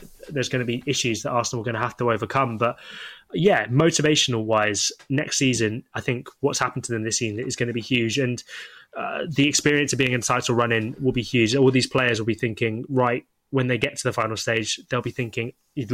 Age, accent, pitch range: 10-29, British, 115-135 Hz